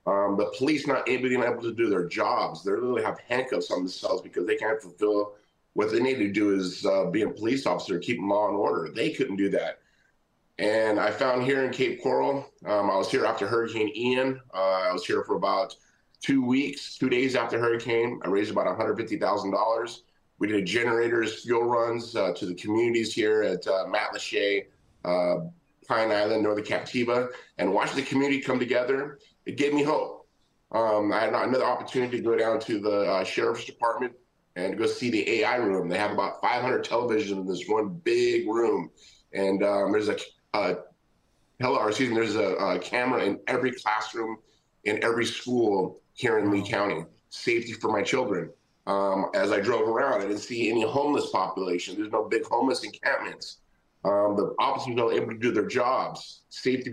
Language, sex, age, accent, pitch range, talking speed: French, male, 30-49, American, 105-135 Hz, 190 wpm